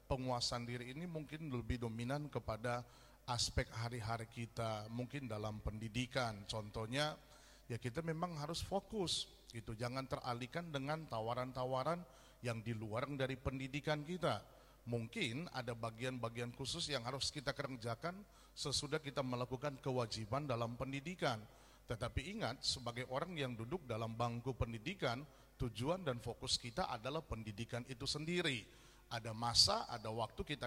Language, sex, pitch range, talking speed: Indonesian, male, 120-155 Hz, 125 wpm